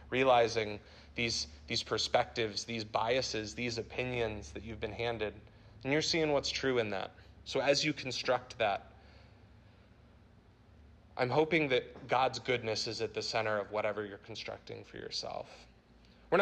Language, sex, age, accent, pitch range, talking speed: English, male, 30-49, American, 105-135 Hz, 145 wpm